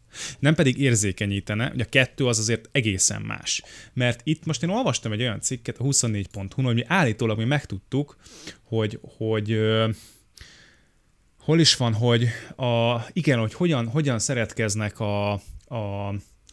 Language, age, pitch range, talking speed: Hungarian, 20-39, 105-140 Hz, 145 wpm